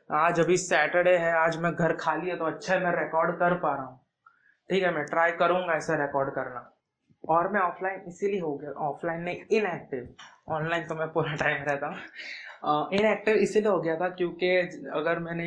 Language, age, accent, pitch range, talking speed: Hindi, 20-39, native, 160-175 Hz, 195 wpm